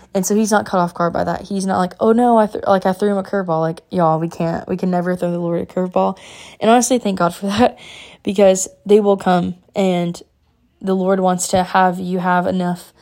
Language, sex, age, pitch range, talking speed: English, female, 10-29, 180-195 Hz, 245 wpm